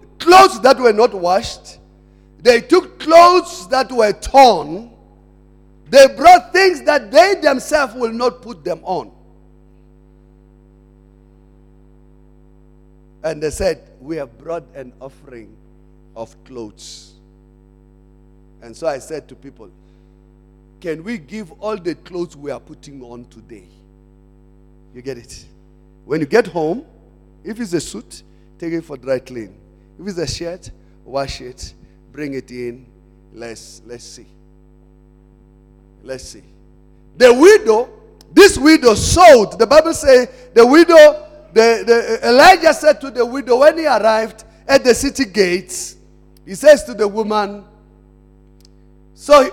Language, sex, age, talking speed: English, male, 50-69, 130 wpm